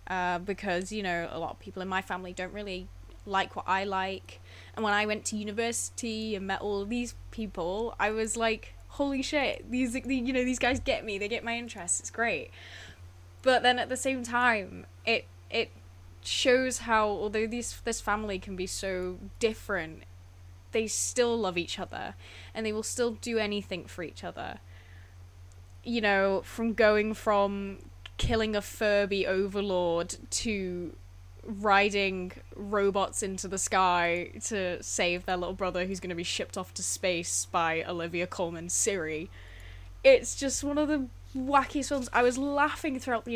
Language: English